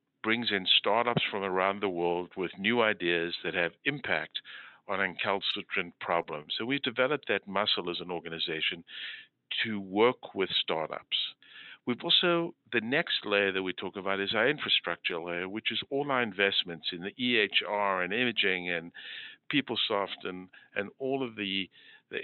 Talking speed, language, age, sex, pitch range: 160 wpm, English, 60-79, male, 90-120 Hz